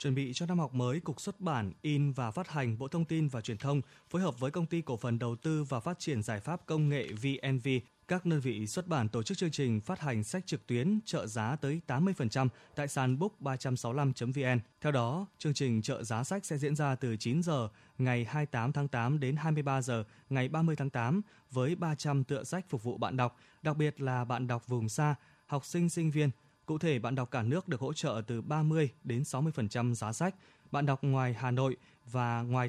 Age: 20-39